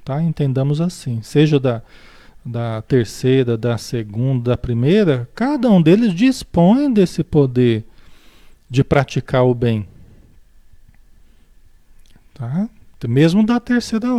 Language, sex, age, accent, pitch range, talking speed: Portuguese, male, 40-59, Brazilian, 125-190 Hz, 95 wpm